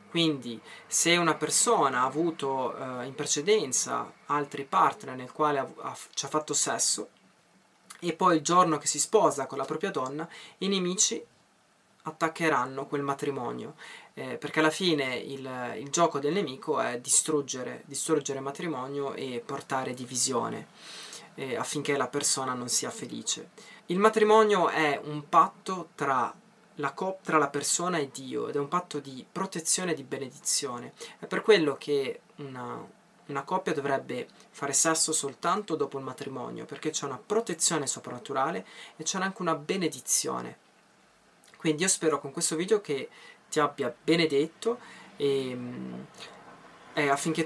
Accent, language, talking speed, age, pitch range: native, Italian, 145 wpm, 20-39, 140-175 Hz